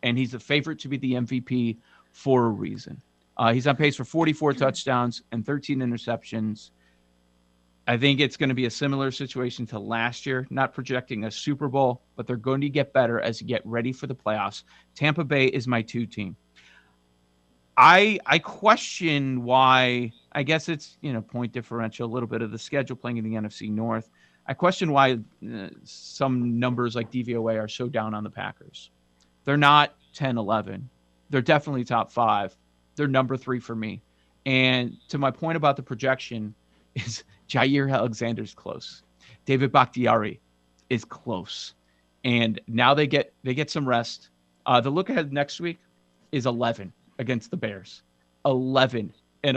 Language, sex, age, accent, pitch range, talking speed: English, male, 40-59, American, 105-140 Hz, 170 wpm